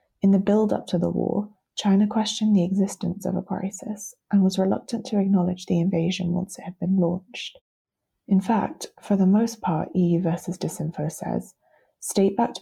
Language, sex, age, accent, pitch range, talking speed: English, female, 20-39, British, 170-195 Hz, 170 wpm